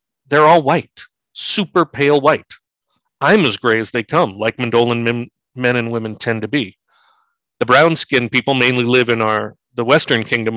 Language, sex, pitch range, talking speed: English, male, 115-145 Hz, 175 wpm